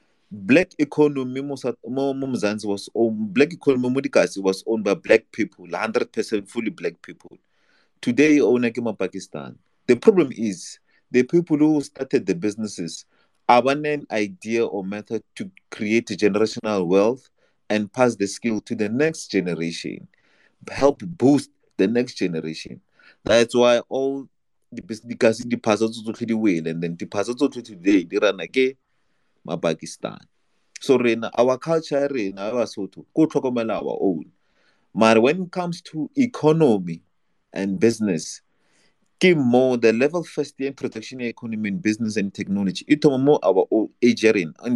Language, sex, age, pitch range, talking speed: English, male, 30-49, 105-140 Hz, 125 wpm